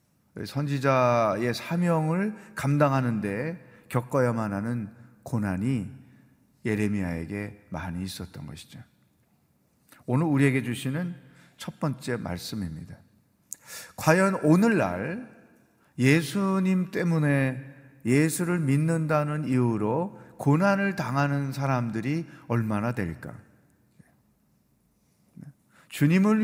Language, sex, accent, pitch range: Korean, male, native, 115-160 Hz